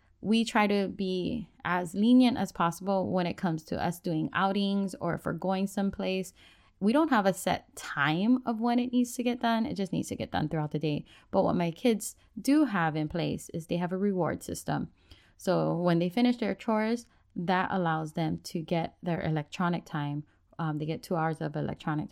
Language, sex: English, female